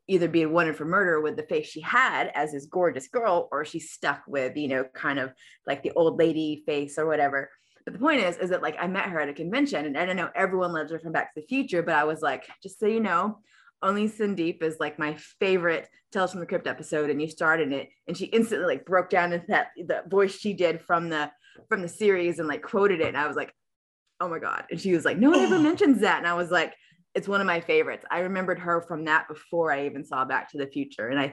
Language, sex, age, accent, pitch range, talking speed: English, female, 20-39, American, 155-200 Hz, 265 wpm